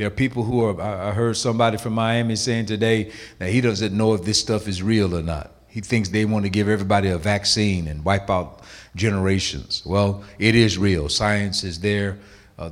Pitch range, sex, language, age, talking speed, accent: 90-110 Hz, male, English, 50-69, 210 wpm, American